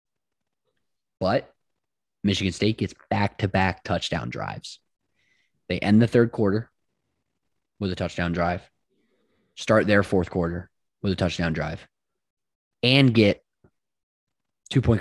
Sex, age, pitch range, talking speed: male, 20-39, 90-115 Hz, 110 wpm